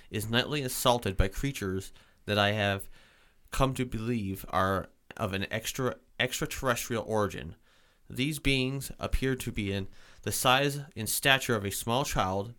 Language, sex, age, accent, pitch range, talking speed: English, male, 30-49, American, 105-130 Hz, 145 wpm